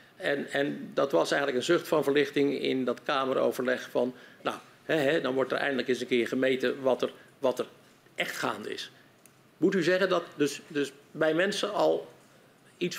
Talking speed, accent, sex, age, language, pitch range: 190 wpm, Dutch, male, 50-69, Dutch, 130-175 Hz